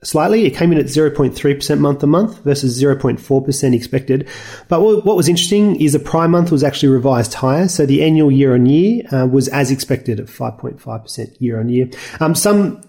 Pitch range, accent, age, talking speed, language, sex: 125-155 Hz, Australian, 30-49, 150 wpm, English, male